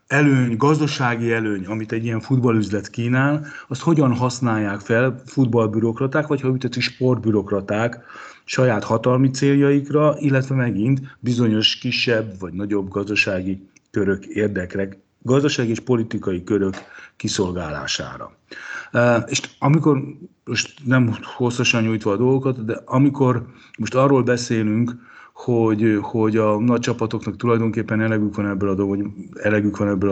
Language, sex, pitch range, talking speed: Hungarian, male, 100-130 Hz, 120 wpm